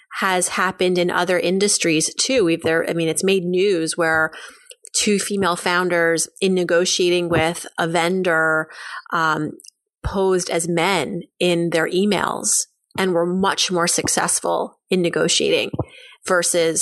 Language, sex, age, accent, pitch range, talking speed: English, female, 30-49, American, 175-220 Hz, 130 wpm